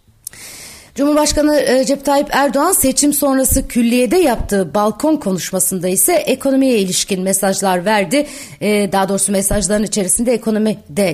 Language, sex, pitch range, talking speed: Turkish, female, 200-255 Hz, 120 wpm